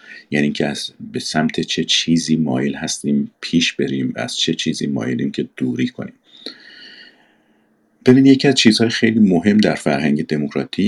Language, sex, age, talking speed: Persian, male, 50-69, 155 wpm